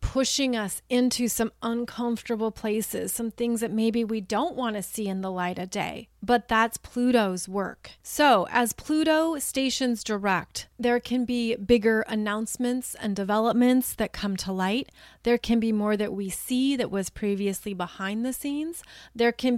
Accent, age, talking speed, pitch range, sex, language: American, 30-49, 170 wpm, 205-240 Hz, female, English